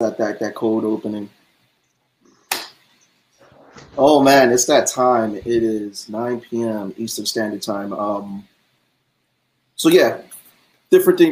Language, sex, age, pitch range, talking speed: English, male, 20-39, 100-115 Hz, 115 wpm